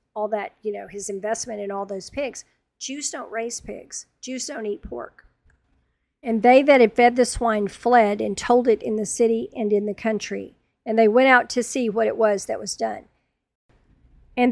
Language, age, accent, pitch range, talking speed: English, 50-69, American, 210-240 Hz, 205 wpm